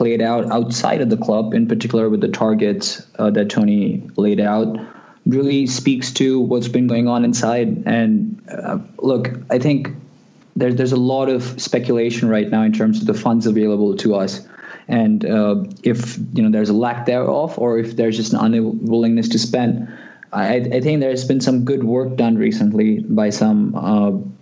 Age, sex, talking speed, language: 20-39, male, 185 wpm, English